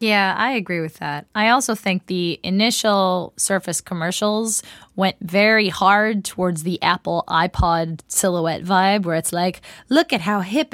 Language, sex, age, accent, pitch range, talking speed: English, female, 20-39, American, 165-210 Hz, 155 wpm